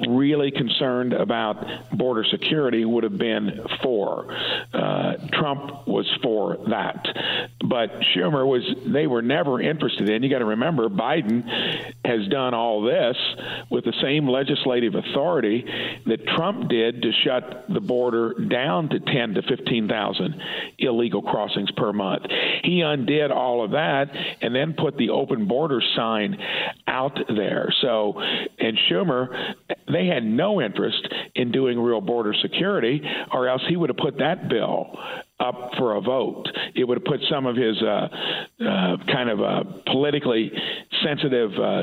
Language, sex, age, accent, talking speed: English, male, 50-69, American, 150 wpm